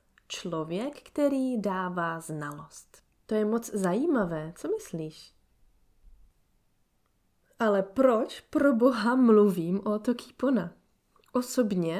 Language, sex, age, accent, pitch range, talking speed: Czech, female, 30-49, native, 185-250 Hz, 90 wpm